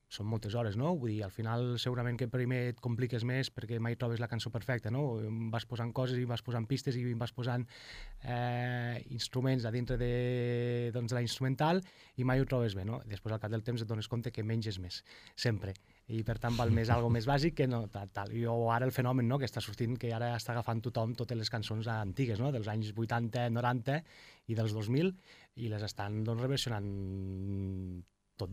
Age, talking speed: 20-39, 210 wpm